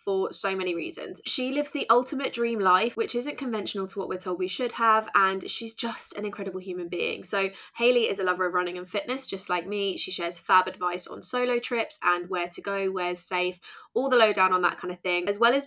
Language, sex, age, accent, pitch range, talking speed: English, female, 20-39, British, 180-230 Hz, 245 wpm